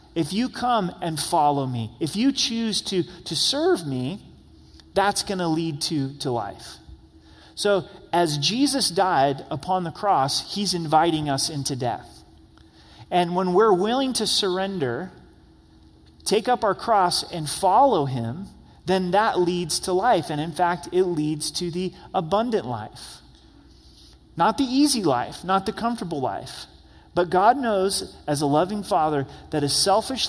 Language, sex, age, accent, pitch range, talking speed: English, male, 30-49, American, 140-195 Hz, 150 wpm